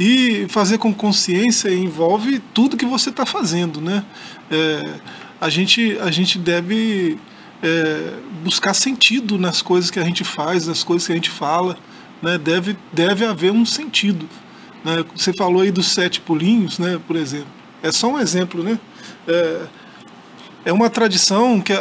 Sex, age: male, 20-39